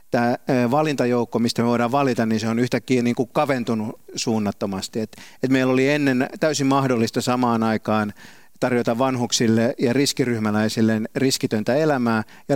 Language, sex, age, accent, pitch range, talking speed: Finnish, male, 50-69, native, 110-130 Hz, 145 wpm